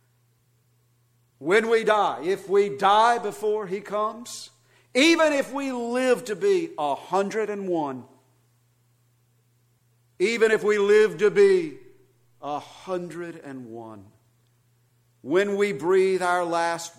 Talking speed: 100 wpm